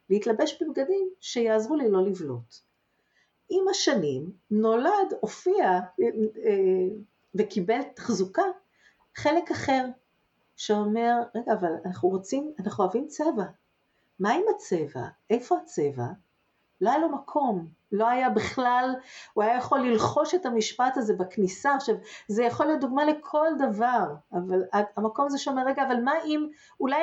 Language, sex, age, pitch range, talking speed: Hebrew, female, 50-69, 205-285 Hz, 135 wpm